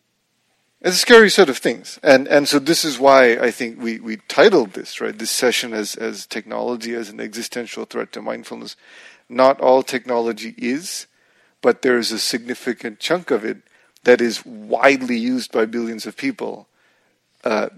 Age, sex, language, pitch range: 40-59, male, English, 115-165 Hz